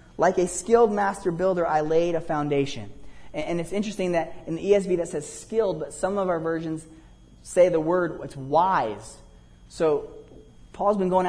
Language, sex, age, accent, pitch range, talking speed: English, male, 30-49, American, 155-195 Hz, 175 wpm